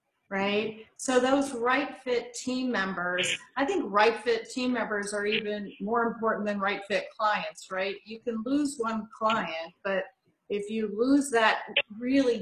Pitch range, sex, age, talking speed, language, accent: 200-250 Hz, female, 40-59, 160 wpm, English, American